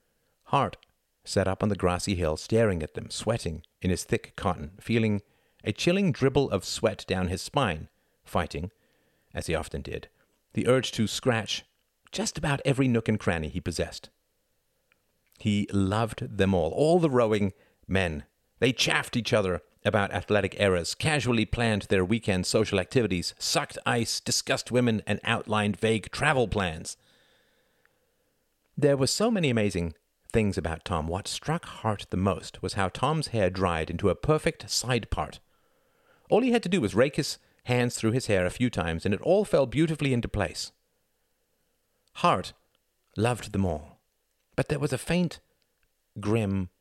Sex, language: male, English